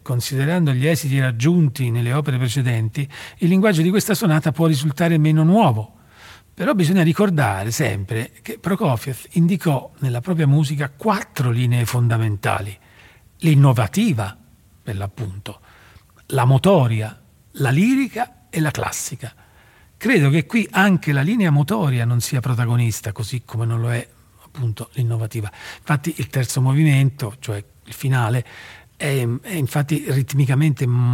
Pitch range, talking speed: 115-155 Hz, 125 wpm